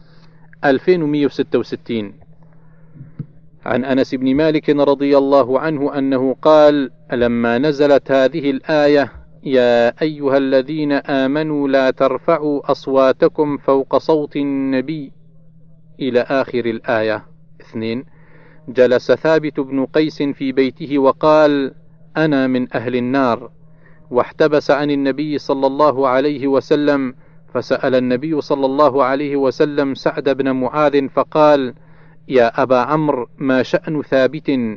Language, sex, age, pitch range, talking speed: Arabic, male, 40-59, 130-155 Hz, 105 wpm